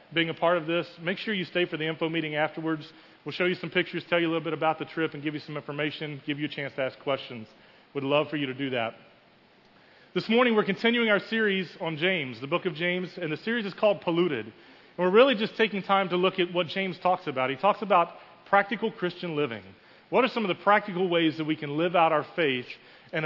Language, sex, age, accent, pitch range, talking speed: English, male, 30-49, American, 145-185 Hz, 250 wpm